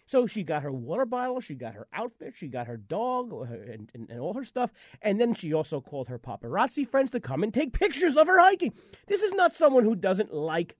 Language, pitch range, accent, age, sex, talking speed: English, 175-270 Hz, American, 30-49, male, 240 wpm